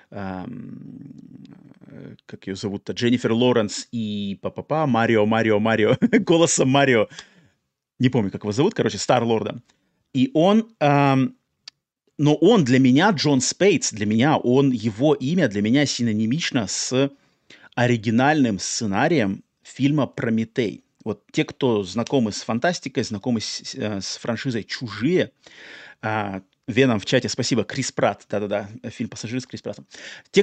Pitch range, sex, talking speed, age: 110-140 Hz, male, 130 wpm, 30-49